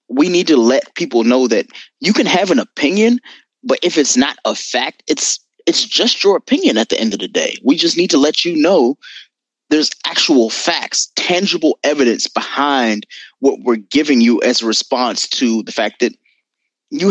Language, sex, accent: English, male, American